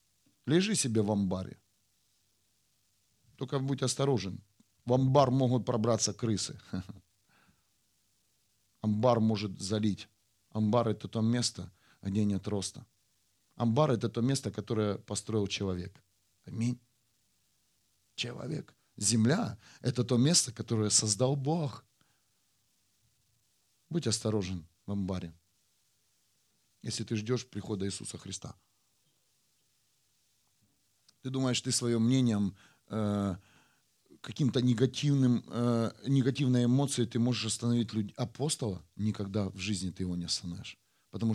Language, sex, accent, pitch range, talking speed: Russian, male, native, 100-125 Hz, 105 wpm